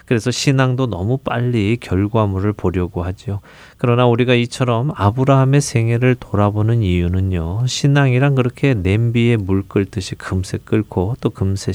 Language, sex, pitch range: Korean, male, 100-130 Hz